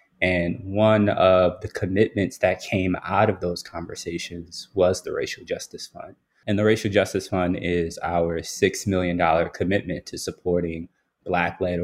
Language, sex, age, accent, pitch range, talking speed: English, male, 20-39, American, 85-100 Hz, 145 wpm